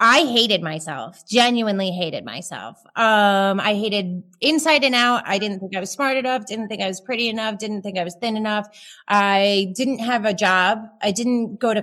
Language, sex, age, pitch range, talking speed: English, female, 30-49, 195-240 Hz, 205 wpm